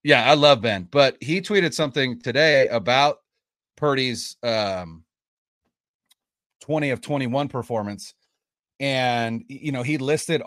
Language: English